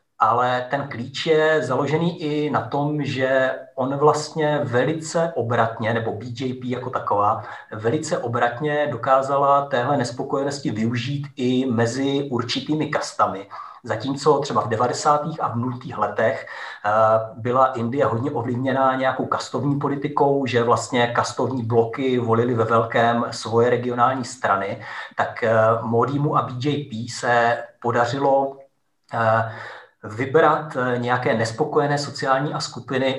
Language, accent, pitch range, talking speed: Czech, native, 115-140 Hz, 115 wpm